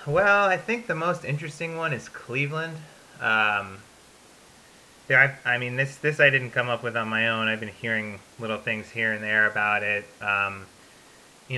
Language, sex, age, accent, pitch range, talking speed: English, male, 30-49, American, 105-125 Hz, 180 wpm